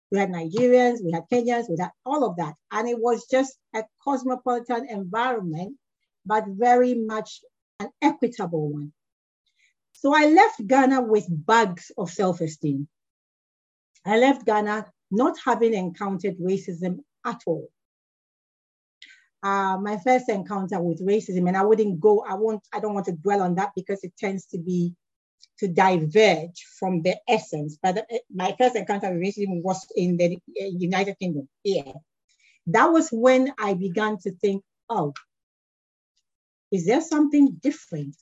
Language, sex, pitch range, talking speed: English, female, 185-240 Hz, 145 wpm